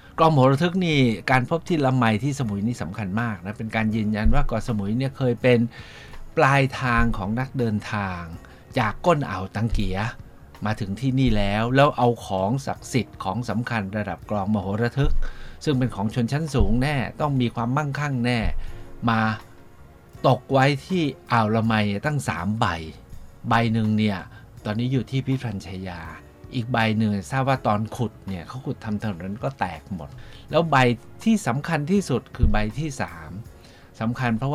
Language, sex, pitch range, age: Thai, male, 105-135 Hz, 60-79